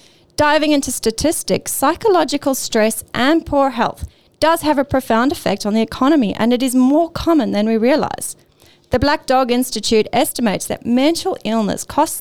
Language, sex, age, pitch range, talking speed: English, female, 30-49, 220-285 Hz, 160 wpm